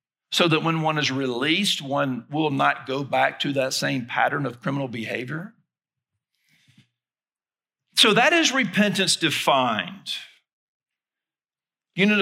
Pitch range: 145-205 Hz